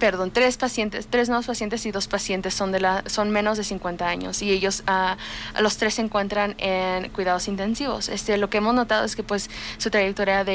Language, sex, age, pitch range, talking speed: English, female, 20-39, 190-215 Hz, 220 wpm